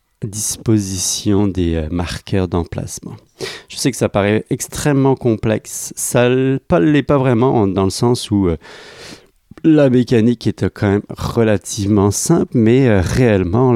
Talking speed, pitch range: 125 wpm, 95-120 Hz